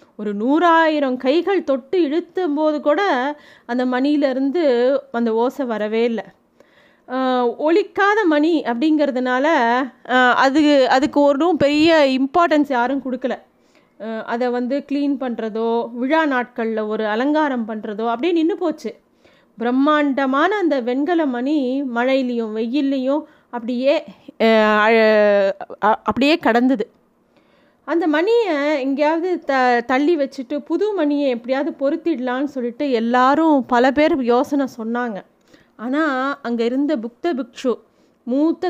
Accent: native